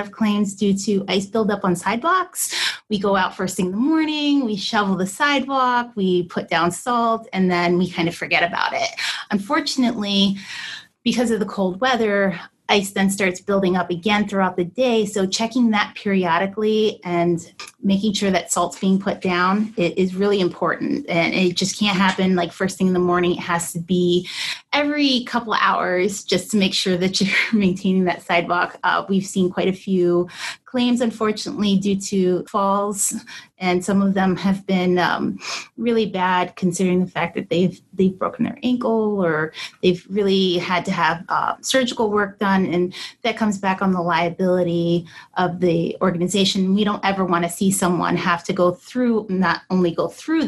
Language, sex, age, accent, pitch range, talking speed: English, female, 30-49, American, 180-210 Hz, 185 wpm